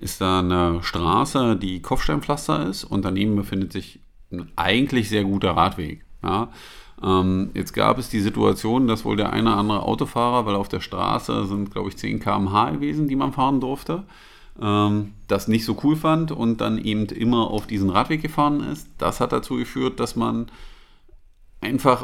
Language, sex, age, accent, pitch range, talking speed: German, male, 40-59, German, 95-125 Hz, 180 wpm